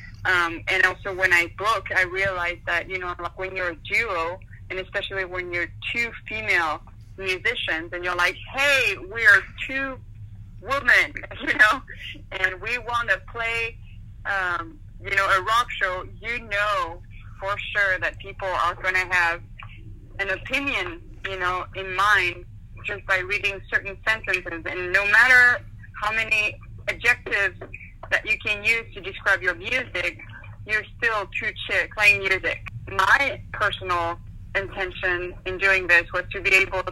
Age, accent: 30-49, American